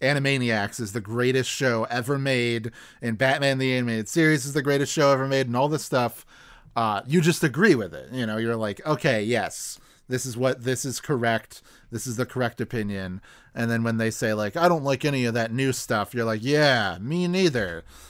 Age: 30-49